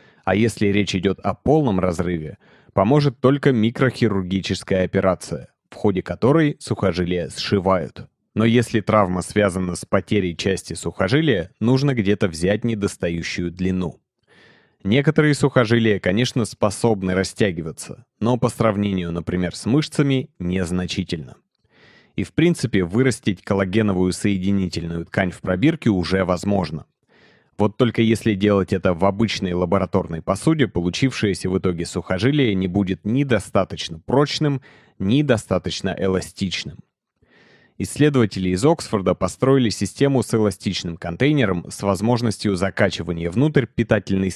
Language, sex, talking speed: Russian, male, 115 wpm